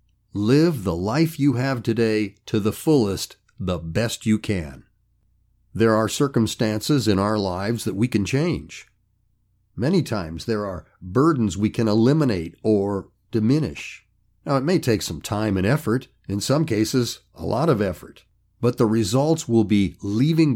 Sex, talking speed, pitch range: male, 160 wpm, 100-130 Hz